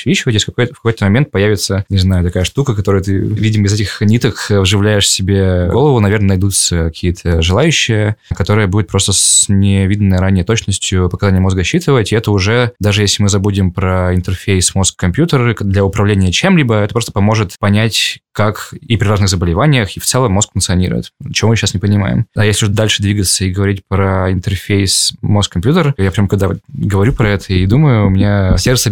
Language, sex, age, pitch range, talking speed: Russian, male, 20-39, 95-110 Hz, 180 wpm